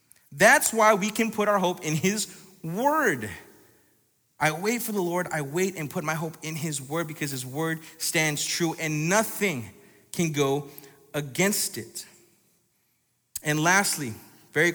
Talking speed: 155 wpm